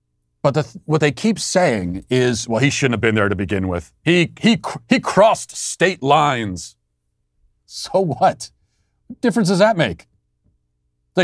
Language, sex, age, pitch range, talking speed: English, male, 40-59, 105-165 Hz, 160 wpm